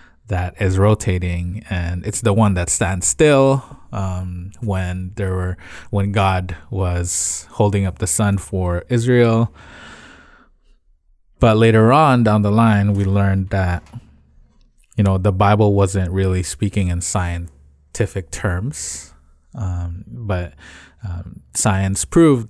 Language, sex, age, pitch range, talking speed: English, male, 20-39, 85-110 Hz, 125 wpm